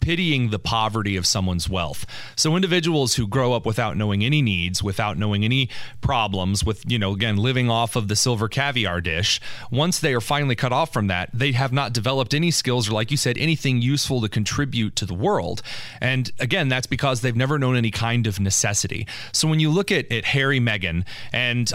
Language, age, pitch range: English, 30-49, 105-135 Hz